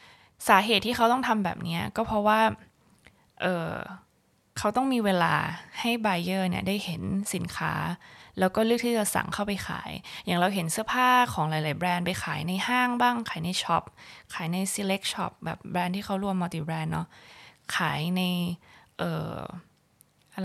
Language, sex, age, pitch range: Thai, female, 20-39, 165-200 Hz